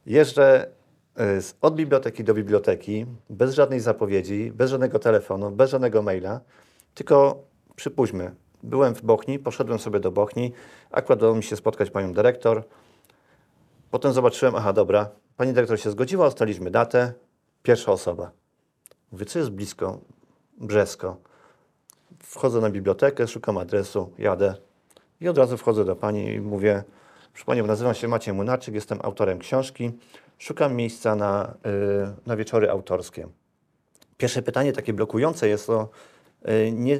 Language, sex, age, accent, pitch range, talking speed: Polish, male, 40-59, native, 105-130 Hz, 130 wpm